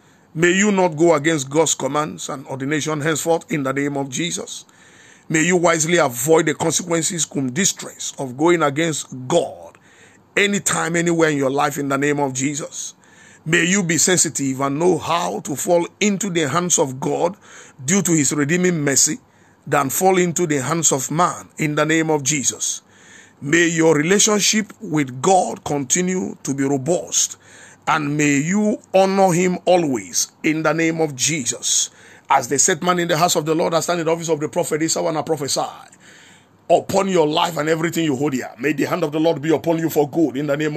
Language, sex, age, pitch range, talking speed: English, male, 50-69, 145-175 Hz, 195 wpm